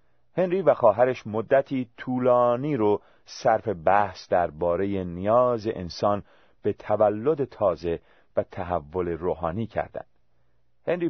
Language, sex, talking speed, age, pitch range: Persian, male, 105 wpm, 40-59, 90-120 Hz